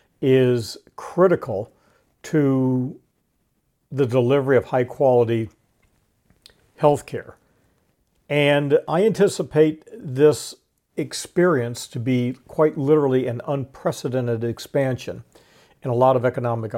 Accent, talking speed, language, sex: American, 95 wpm, English, male